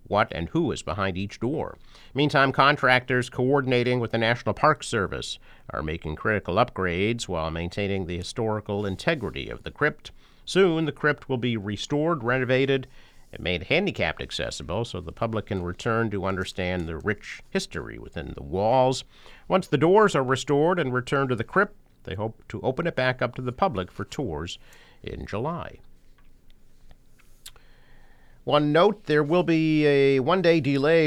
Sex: male